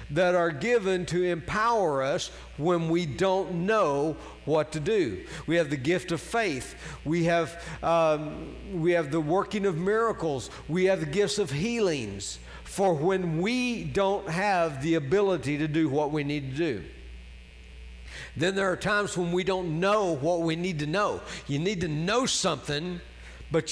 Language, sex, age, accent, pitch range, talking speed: English, male, 60-79, American, 145-190 Hz, 170 wpm